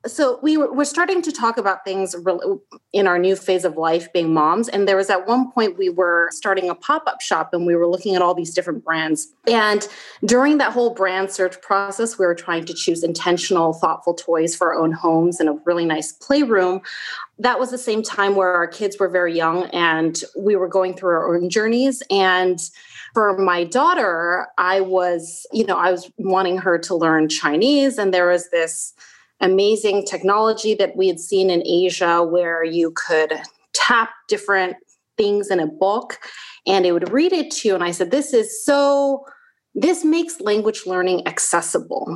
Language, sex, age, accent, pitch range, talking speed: English, female, 30-49, American, 175-230 Hz, 190 wpm